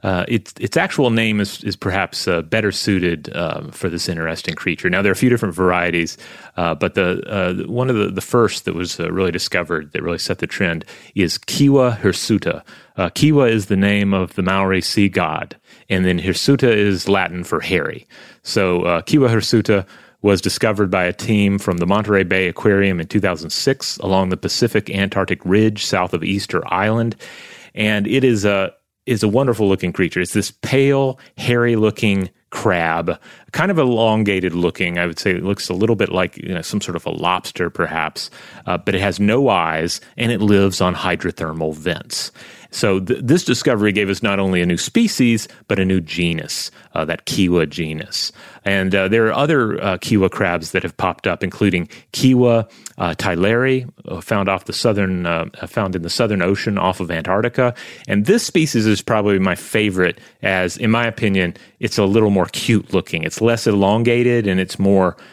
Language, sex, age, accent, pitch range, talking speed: English, male, 30-49, American, 95-115 Hz, 190 wpm